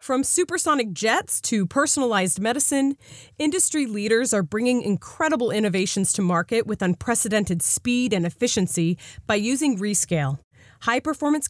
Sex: female